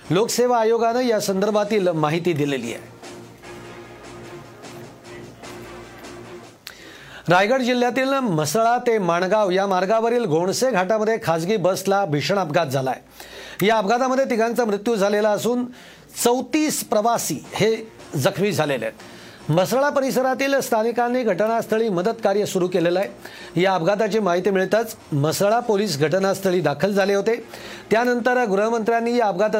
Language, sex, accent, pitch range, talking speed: Marathi, male, native, 175-230 Hz, 85 wpm